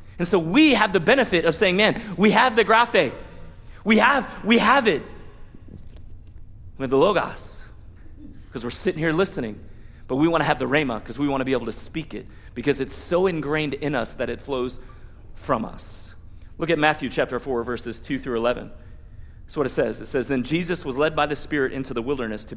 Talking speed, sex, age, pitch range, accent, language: 215 wpm, male, 30-49, 115-160 Hz, American, English